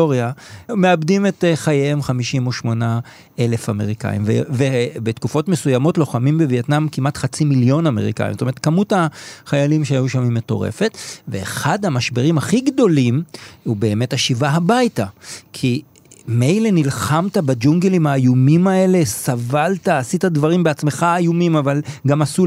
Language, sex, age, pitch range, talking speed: Hebrew, male, 40-59, 135-175 Hz, 125 wpm